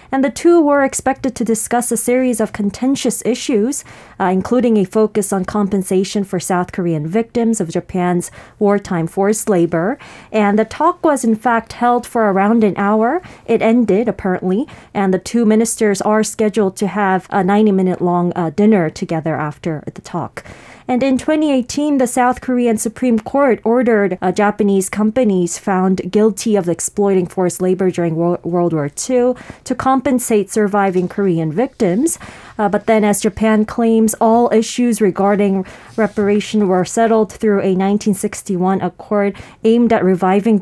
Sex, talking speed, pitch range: female, 155 wpm, 190-230 Hz